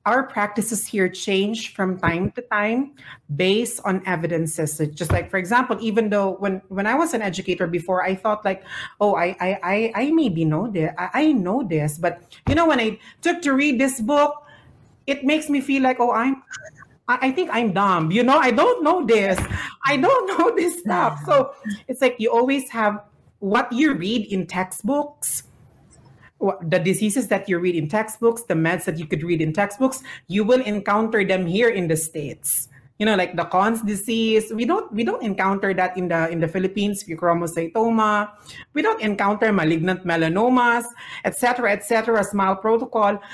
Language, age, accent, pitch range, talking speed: English, 40-59, Filipino, 180-235 Hz, 185 wpm